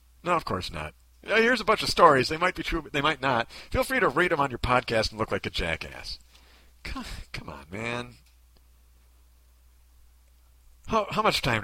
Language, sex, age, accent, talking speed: English, male, 50-69, American, 195 wpm